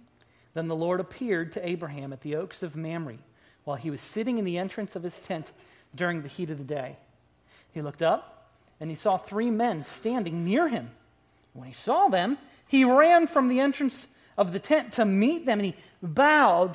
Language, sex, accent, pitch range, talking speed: English, male, American, 175-250 Hz, 200 wpm